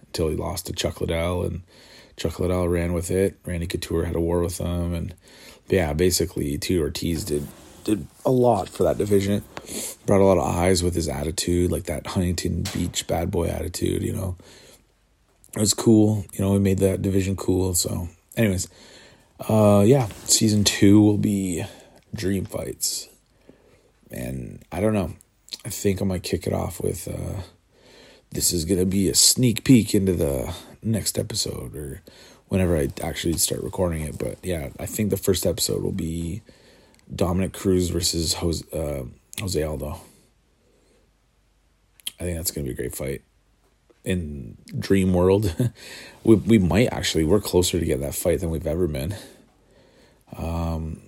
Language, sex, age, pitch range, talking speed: English, male, 30-49, 85-100 Hz, 165 wpm